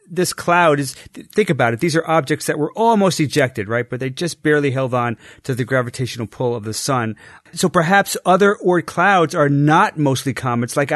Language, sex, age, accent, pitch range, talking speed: English, male, 40-59, American, 115-150 Hz, 210 wpm